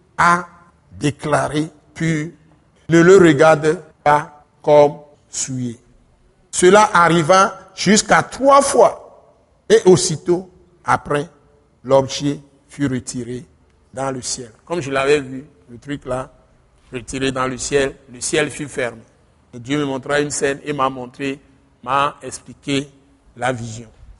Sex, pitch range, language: male, 135-185 Hz, French